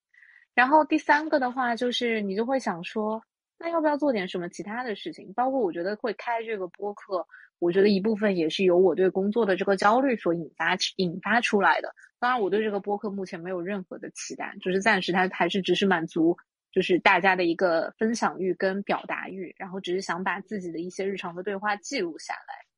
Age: 20-39